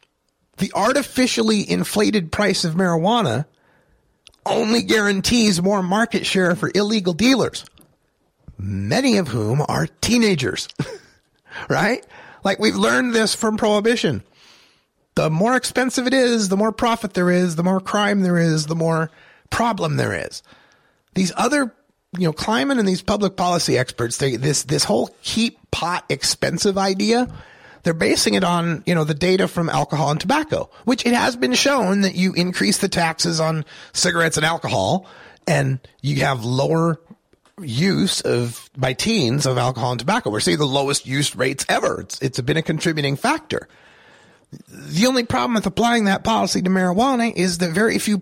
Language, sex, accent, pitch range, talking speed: English, male, American, 165-220 Hz, 160 wpm